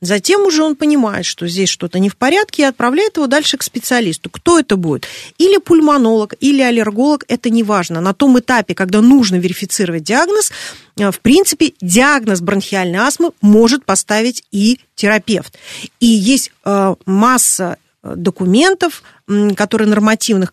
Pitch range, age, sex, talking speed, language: 190-265 Hz, 40-59, female, 140 wpm, Russian